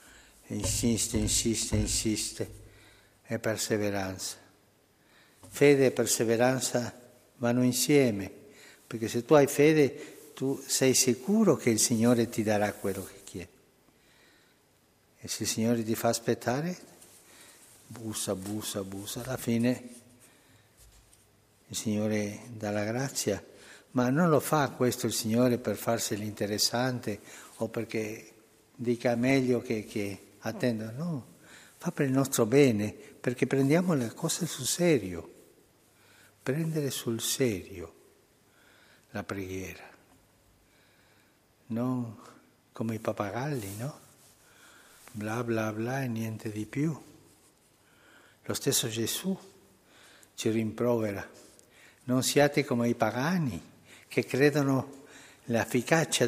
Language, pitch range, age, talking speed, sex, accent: Italian, 110-130 Hz, 60-79, 110 wpm, male, native